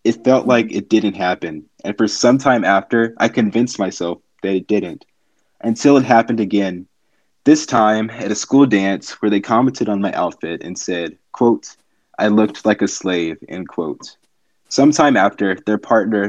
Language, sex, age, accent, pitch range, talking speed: English, male, 20-39, American, 100-115 Hz, 175 wpm